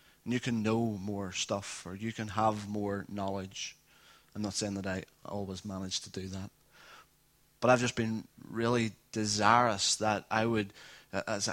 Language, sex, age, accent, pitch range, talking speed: English, male, 20-39, British, 100-120 Hz, 165 wpm